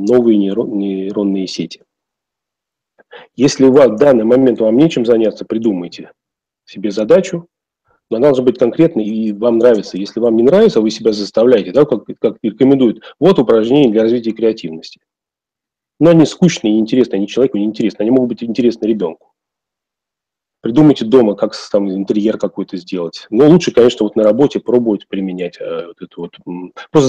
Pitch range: 105-140 Hz